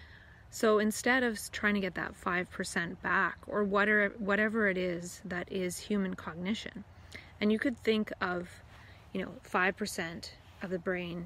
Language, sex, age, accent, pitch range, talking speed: English, female, 20-39, American, 180-205 Hz, 150 wpm